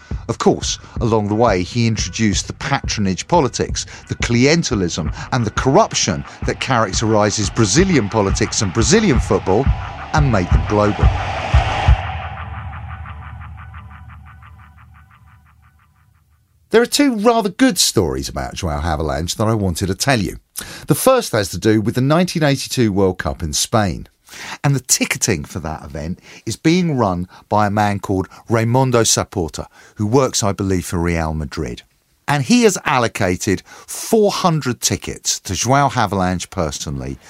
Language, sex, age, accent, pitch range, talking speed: English, male, 40-59, British, 85-120 Hz, 135 wpm